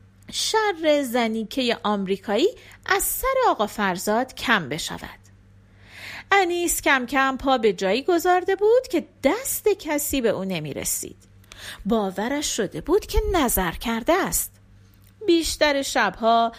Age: 40-59